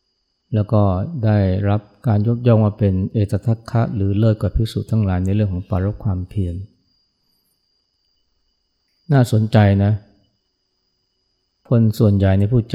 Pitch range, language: 95-110 Hz, Thai